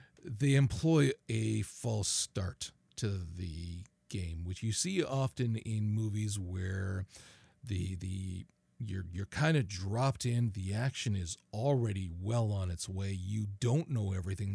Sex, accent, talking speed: male, American, 145 wpm